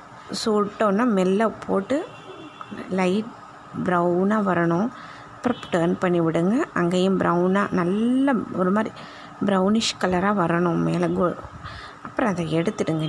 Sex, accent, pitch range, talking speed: female, native, 175-215 Hz, 105 wpm